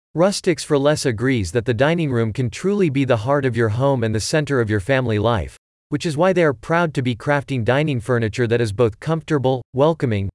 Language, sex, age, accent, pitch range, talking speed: English, male, 40-59, American, 115-150 Hz, 225 wpm